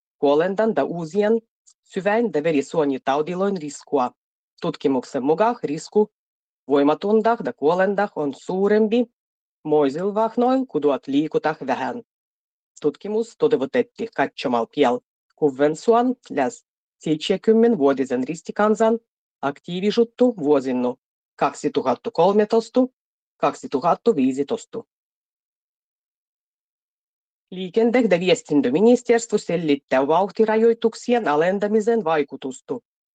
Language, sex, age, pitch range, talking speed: Finnish, female, 20-39, 150-230 Hz, 70 wpm